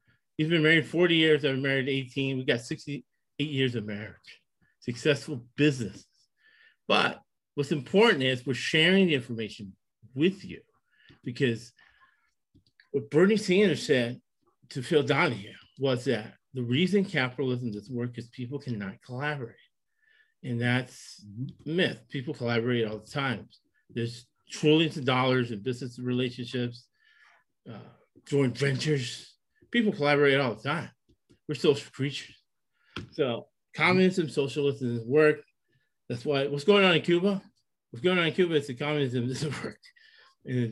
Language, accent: English, American